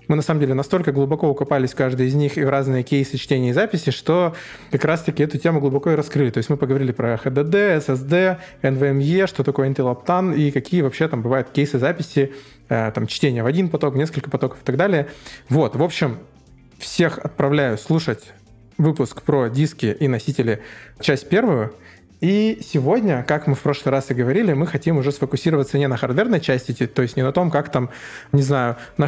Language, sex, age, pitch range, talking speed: Russian, male, 20-39, 120-155 Hz, 195 wpm